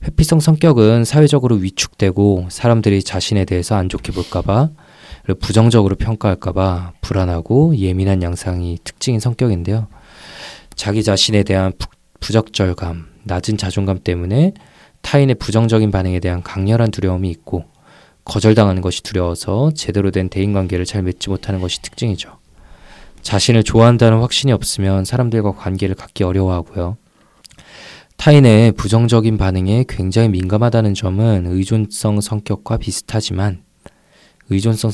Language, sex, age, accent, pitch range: Korean, male, 20-39, native, 95-115 Hz